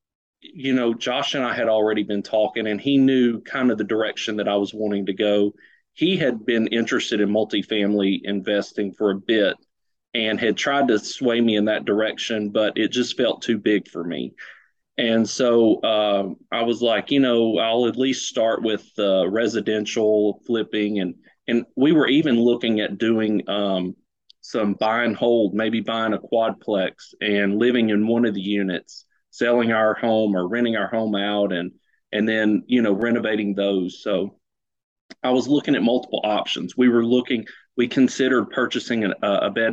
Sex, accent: male, American